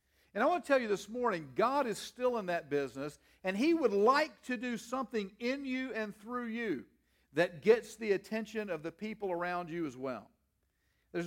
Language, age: English, 50-69